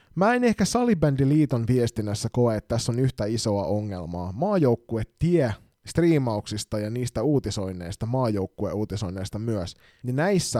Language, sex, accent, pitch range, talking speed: Finnish, male, native, 105-135 Hz, 130 wpm